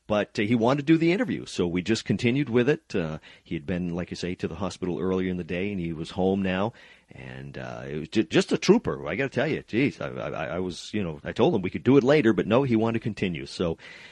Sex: male